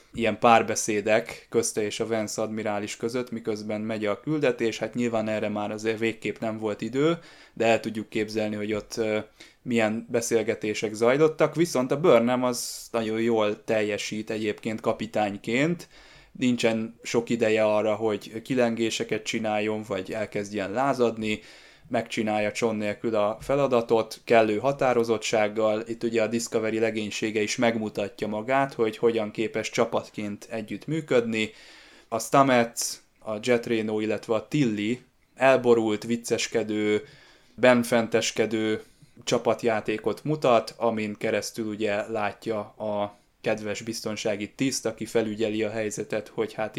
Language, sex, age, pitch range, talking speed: Hungarian, male, 20-39, 105-120 Hz, 125 wpm